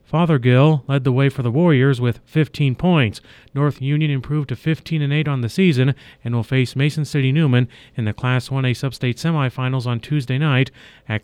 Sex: male